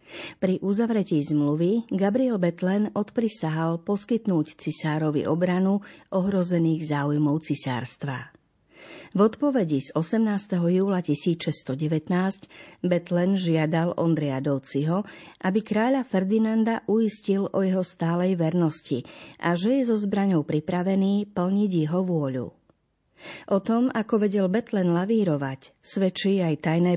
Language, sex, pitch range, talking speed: Slovak, female, 155-200 Hz, 105 wpm